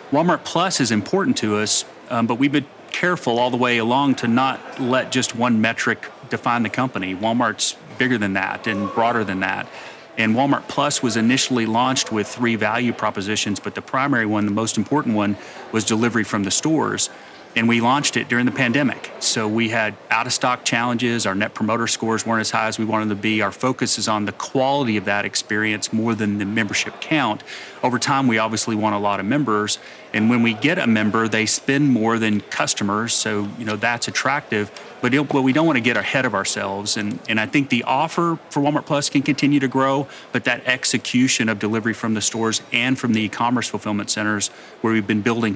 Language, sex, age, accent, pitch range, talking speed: English, male, 30-49, American, 105-125 Hz, 210 wpm